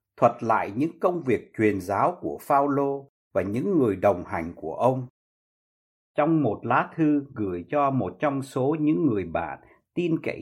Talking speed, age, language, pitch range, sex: 175 wpm, 60-79, Vietnamese, 110-165 Hz, male